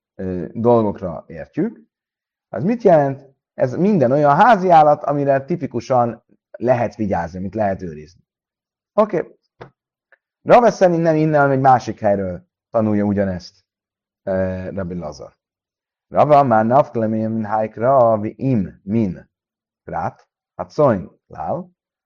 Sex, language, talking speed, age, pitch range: male, Hungarian, 105 wpm, 30-49, 100-140 Hz